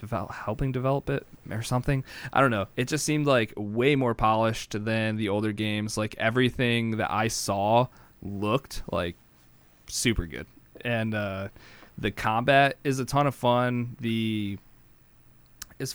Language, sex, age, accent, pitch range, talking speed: English, male, 20-39, American, 105-125 Hz, 145 wpm